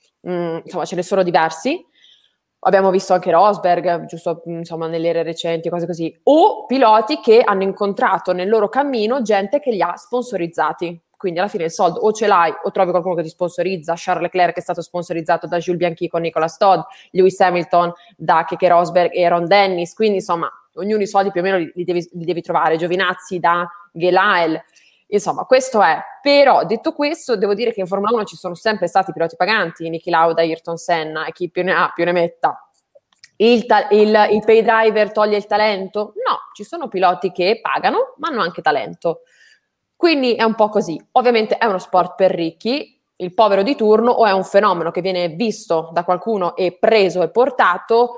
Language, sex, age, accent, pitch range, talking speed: Italian, female, 20-39, native, 175-215 Hz, 195 wpm